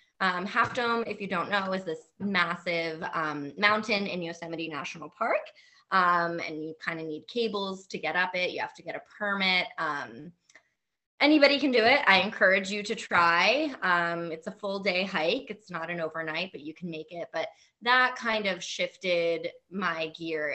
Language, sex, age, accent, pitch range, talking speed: English, female, 20-39, American, 165-210 Hz, 190 wpm